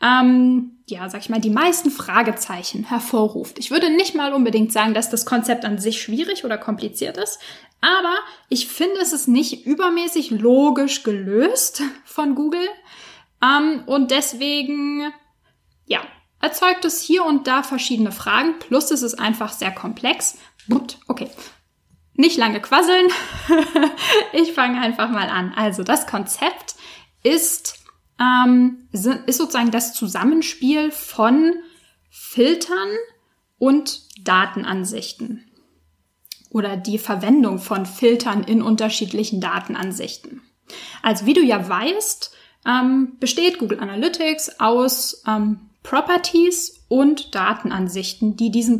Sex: female